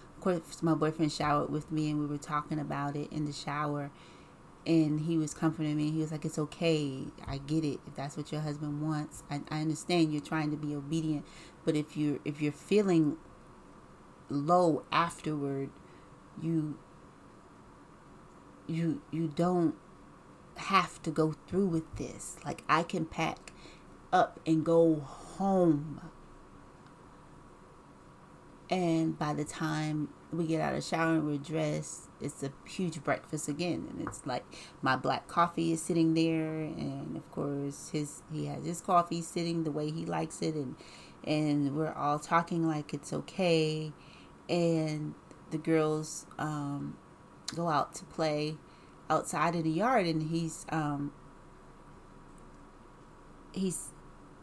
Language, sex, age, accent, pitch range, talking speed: English, female, 30-49, American, 150-165 Hz, 145 wpm